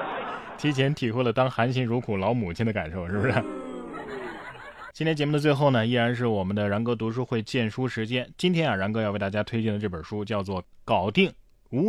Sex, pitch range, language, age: male, 110-165 Hz, Chinese, 20-39